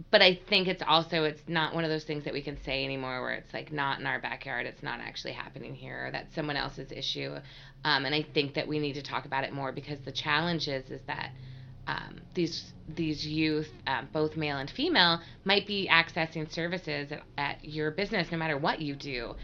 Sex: female